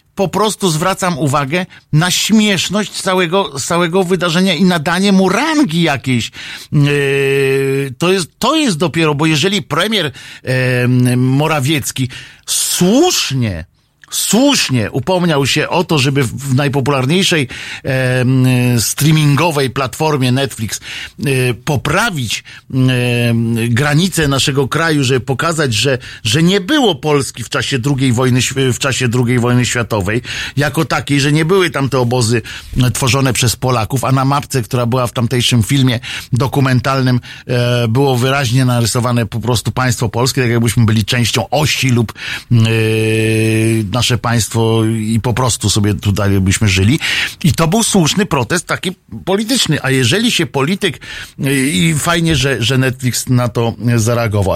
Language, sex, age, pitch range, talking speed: Polish, male, 50-69, 120-160 Hz, 130 wpm